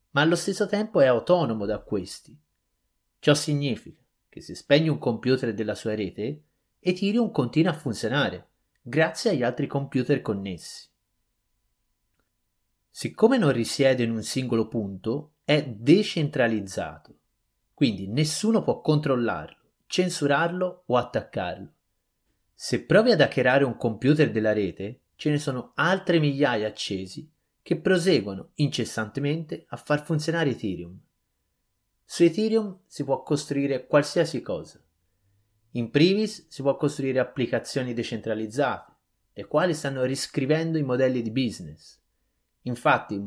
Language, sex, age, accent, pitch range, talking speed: Italian, male, 30-49, native, 110-160 Hz, 120 wpm